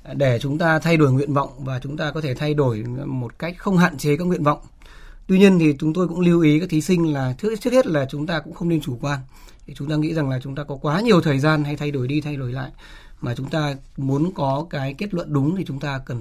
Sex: male